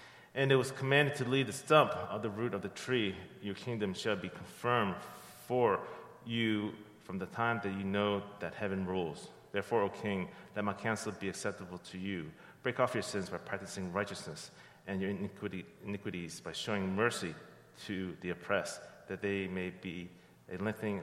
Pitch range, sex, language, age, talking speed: 95-110 Hz, male, English, 30-49, 175 wpm